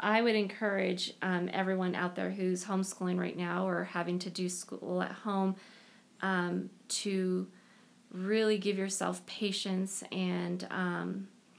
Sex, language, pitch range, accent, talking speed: female, English, 180-205 Hz, American, 135 wpm